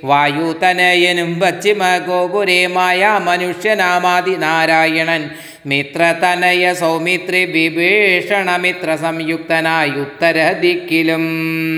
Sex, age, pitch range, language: male, 30-49, 160-180 Hz, Malayalam